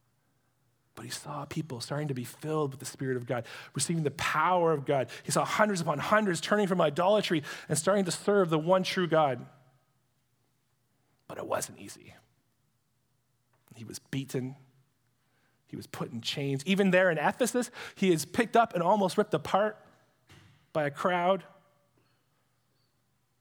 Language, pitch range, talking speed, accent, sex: English, 125-165 Hz, 155 wpm, American, male